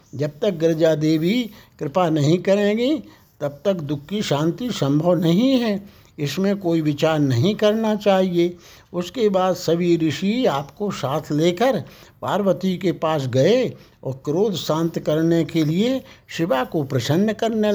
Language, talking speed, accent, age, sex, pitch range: Hindi, 140 wpm, native, 60-79, male, 155-200 Hz